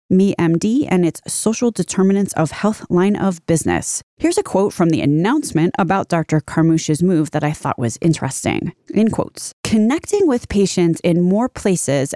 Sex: female